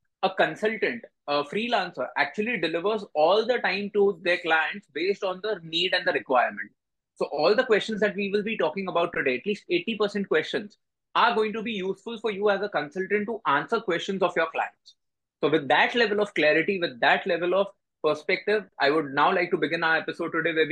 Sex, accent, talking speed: male, native, 205 wpm